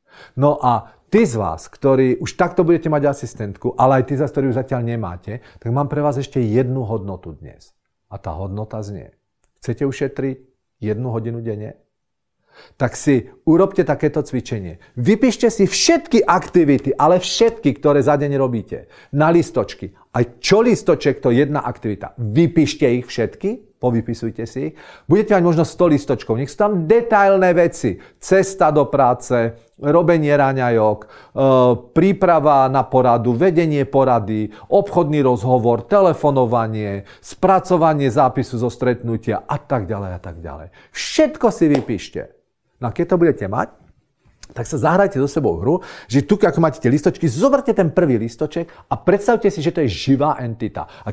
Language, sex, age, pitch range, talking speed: Czech, male, 40-59, 120-170 Hz, 150 wpm